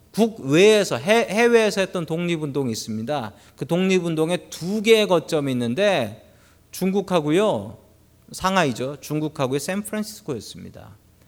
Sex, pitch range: male, 130-205 Hz